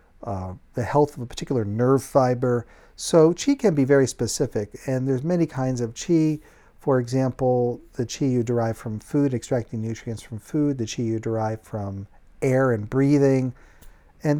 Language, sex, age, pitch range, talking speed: English, male, 50-69, 115-140 Hz, 170 wpm